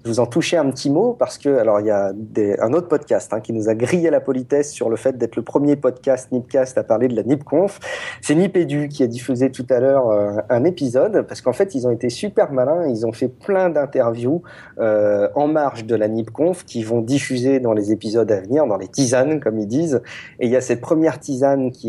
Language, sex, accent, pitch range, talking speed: French, male, French, 115-155 Hz, 245 wpm